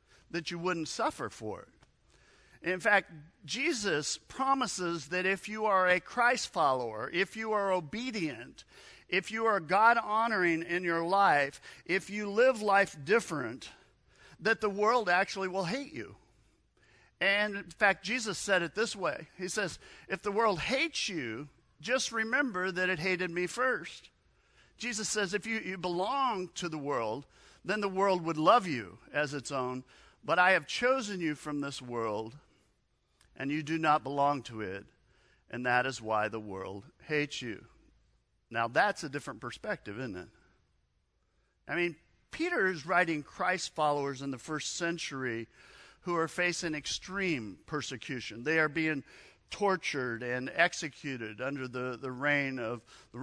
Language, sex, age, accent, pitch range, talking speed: English, male, 50-69, American, 140-200 Hz, 155 wpm